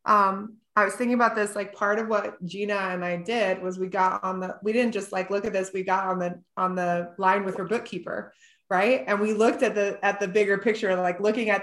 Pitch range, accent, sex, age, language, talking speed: 190-230 Hz, American, female, 20-39, English, 255 wpm